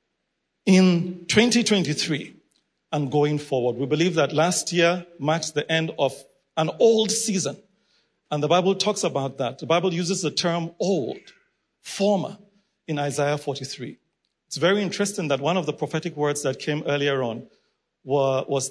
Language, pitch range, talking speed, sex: English, 140-180 Hz, 155 wpm, male